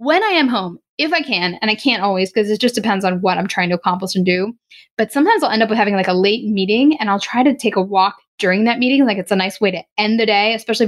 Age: 10-29